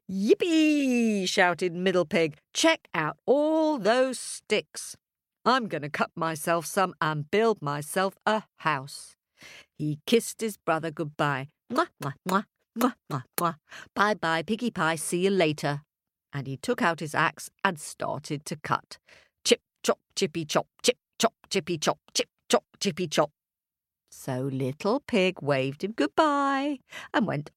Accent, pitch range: British, 155-230 Hz